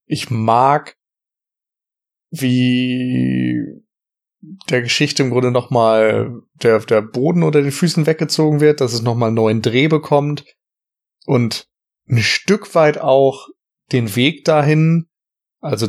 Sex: male